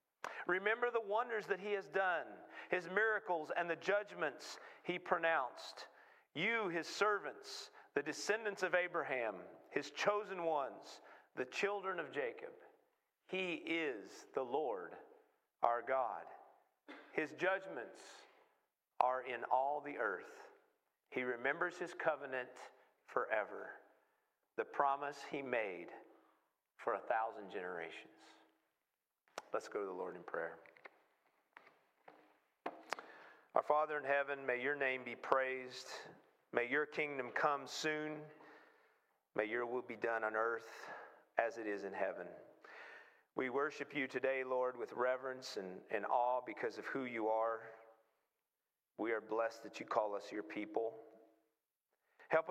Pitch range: 130-205 Hz